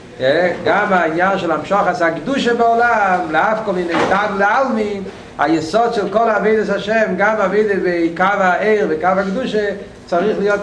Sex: male